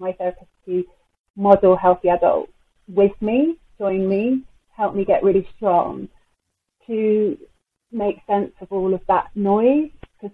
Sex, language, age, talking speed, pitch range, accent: female, English, 30-49, 140 wpm, 180-205 Hz, British